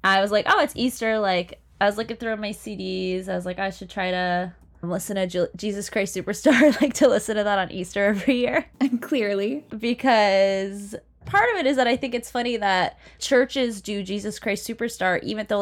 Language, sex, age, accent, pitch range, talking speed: English, female, 20-39, American, 175-225 Hz, 210 wpm